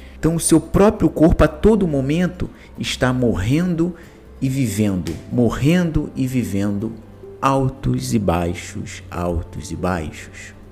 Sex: male